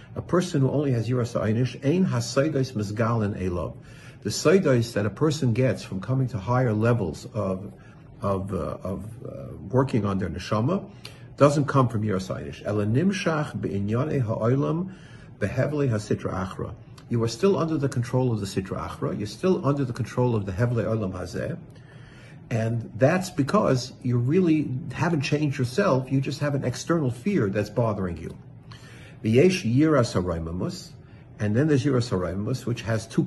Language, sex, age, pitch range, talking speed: English, male, 50-69, 105-140 Hz, 145 wpm